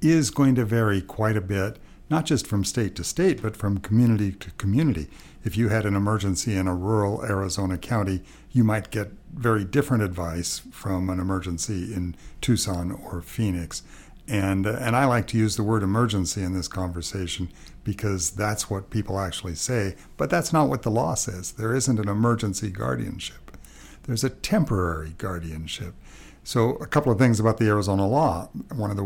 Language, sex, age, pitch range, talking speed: English, male, 60-79, 95-115 Hz, 180 wpm